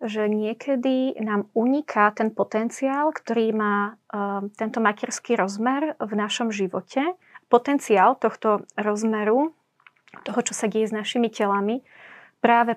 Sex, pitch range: female, 205-235 Hz